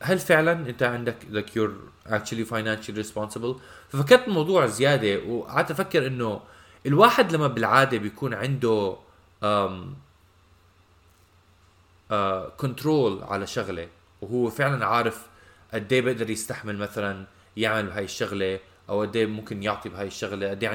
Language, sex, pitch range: Arabic, male, 100-130 Hz